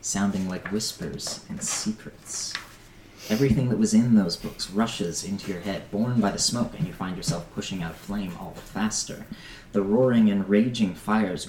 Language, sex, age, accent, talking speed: English, male, 30-49, American, 180 wpm